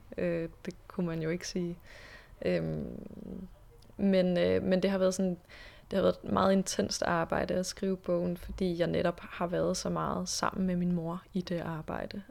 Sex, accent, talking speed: female, native, 170 wpm